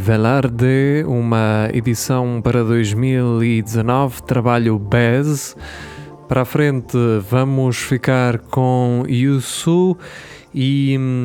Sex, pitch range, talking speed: male, 110-130 Hz, 80 wpm